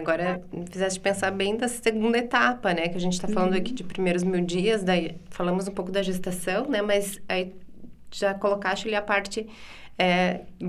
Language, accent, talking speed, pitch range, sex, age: Portuguese, Brazilian, 190 wpm, 180-230 Hz, female, 20-39